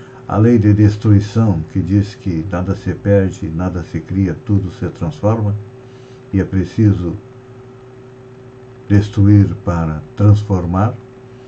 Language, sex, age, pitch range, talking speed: Portuguese, male, 60-79, 95-125 Hz, 115 wpm